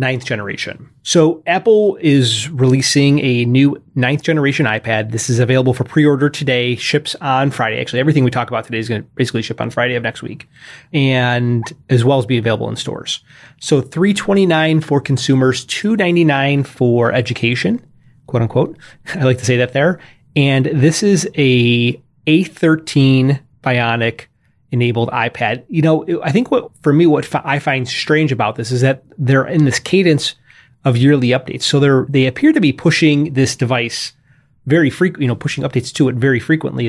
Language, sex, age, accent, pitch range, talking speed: English, male, 30-49, American, 120-150 Hz, 175 wpm